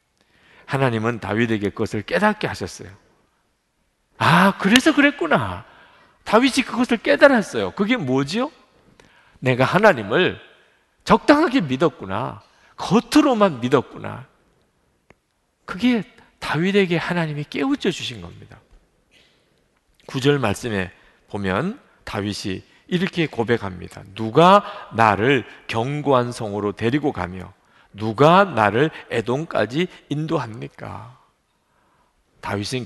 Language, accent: Korean, native